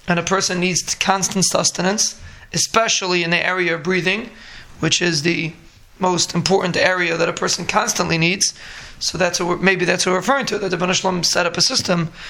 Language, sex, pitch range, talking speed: English, male, 175-200 Hz, 195 wpm